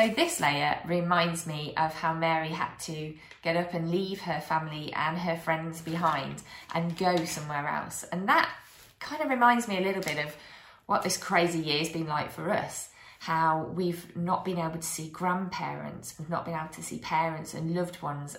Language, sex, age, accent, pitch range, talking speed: English, female, 20-39, British, 155-180 Hz, 195 wpm